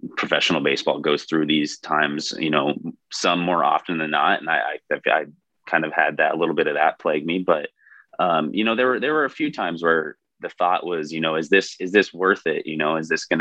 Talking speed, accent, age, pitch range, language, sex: 245 wpm, American, 20-39, 75-85 Hz, English, male